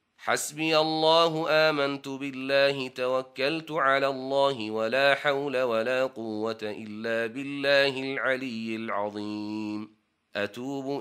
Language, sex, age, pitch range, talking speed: Arabic, male, 30-49, 115-140 Hz, 85 wpm